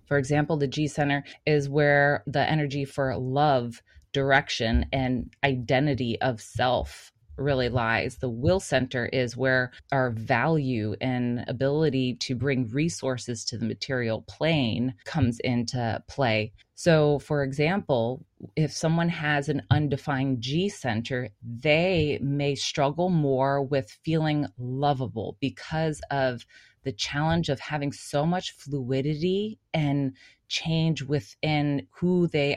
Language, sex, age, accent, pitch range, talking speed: English, female, 20-39, American, 130-155 Hz, 120 wpm